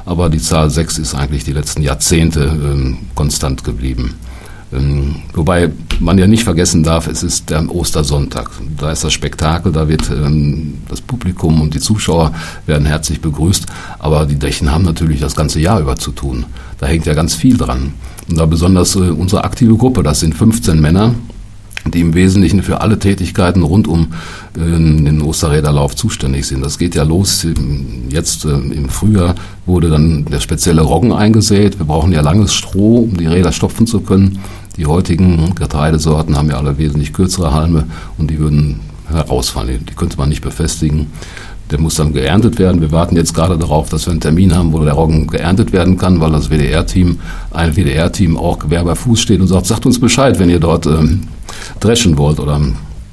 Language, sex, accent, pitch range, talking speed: German, male, German, 75-90 Hz, 185 wpm